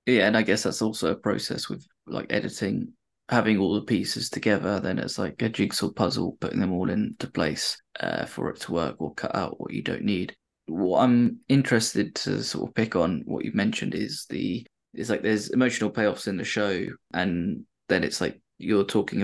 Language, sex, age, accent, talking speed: English, male, 20-39, British, 205 wpm